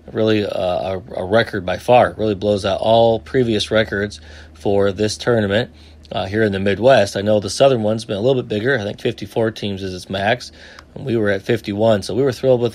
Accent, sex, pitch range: American, male, 100-125 Hz